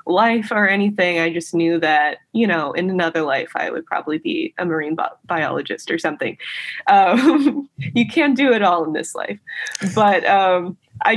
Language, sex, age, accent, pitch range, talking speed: English, female, 20-39, American, 175-230 Hz, 175 wpm